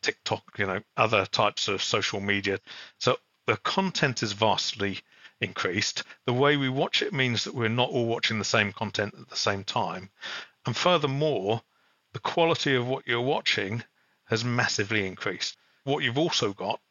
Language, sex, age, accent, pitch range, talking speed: English, male, 40-59, British, 100-125 Hz, 165 wpm